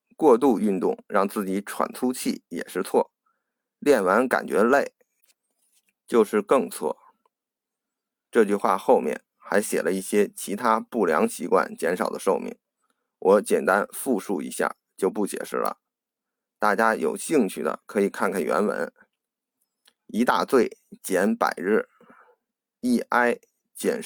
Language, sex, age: Chinese, male, 50-69